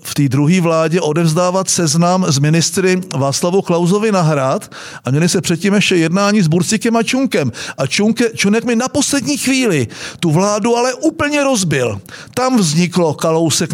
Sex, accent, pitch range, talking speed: male, native, 150-200 Hz, 160 wpm